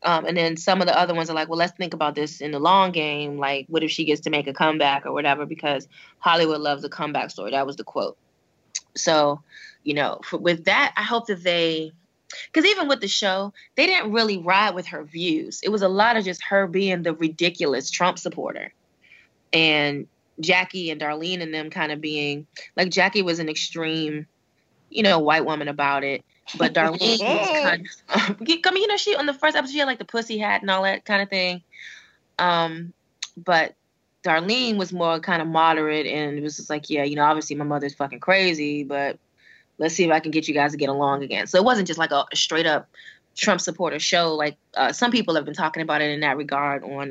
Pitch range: 150-195 Hz